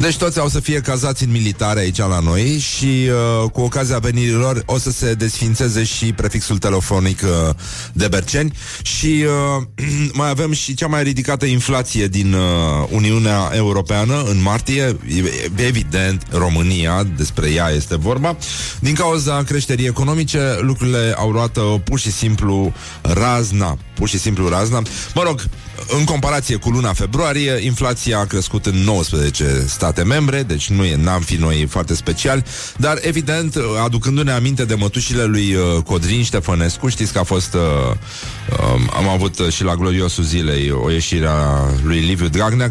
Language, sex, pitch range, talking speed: Romanian, male, 95-125 Hz, 150 wpm